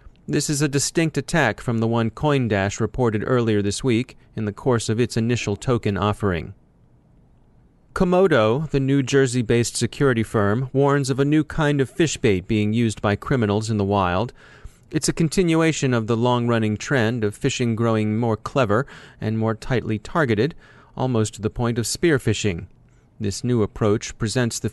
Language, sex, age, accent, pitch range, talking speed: English, male, 30-49, American, 110-140 Hz, 170 wpm